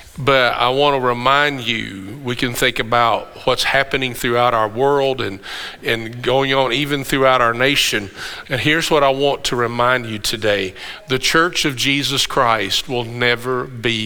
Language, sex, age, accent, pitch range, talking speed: English, male, 50-69, American, 140-185 Hz, 170 wpm